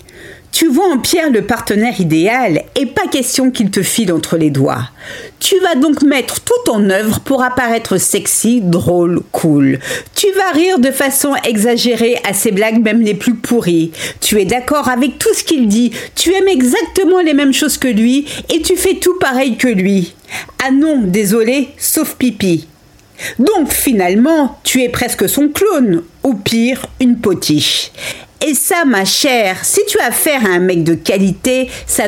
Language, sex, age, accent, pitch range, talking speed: French, female, 50-69, French, 195-295 Hz, 175 wpm